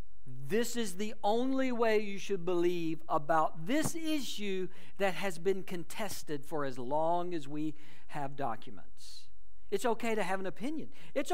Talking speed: 155 wpm